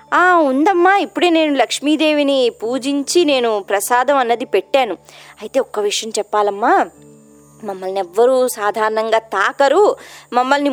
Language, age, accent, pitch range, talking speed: Telugu, 20-39, native, 210-315 Hz, 100 wpm